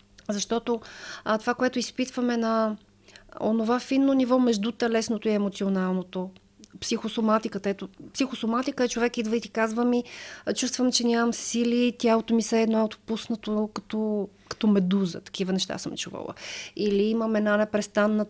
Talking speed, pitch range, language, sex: 145 wpm, 190-230 Hz, Bulgarian, female